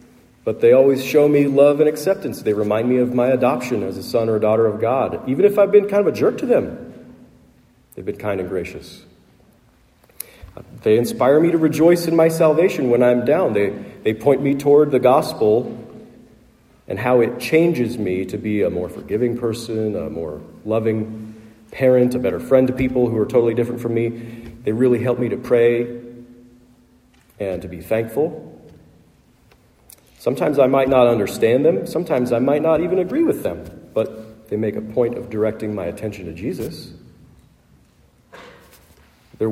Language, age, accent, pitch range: English, 40-59, American, 110-130 Hz